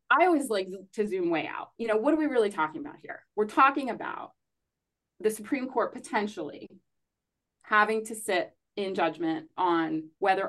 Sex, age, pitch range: female, 30-49, 180-235 Hz